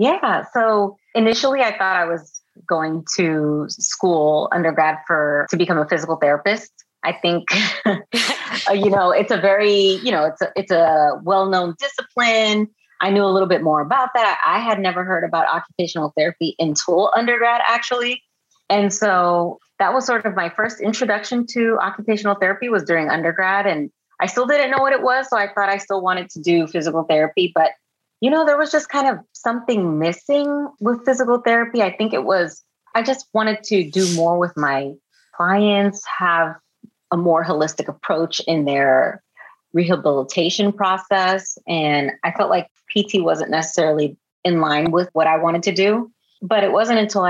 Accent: American